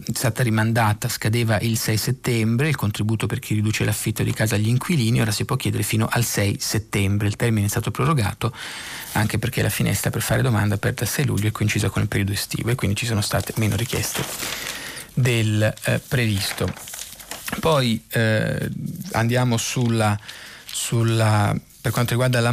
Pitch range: 105-125 Hz